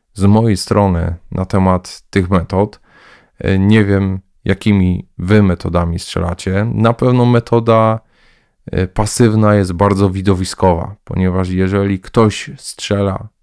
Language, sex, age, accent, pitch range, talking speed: Polish, male, 20-39, native, 95-110 Hz, 105 wpm